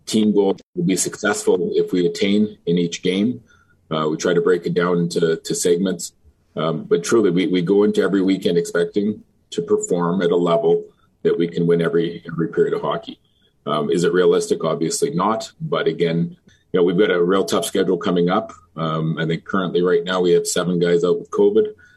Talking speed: 210 wpm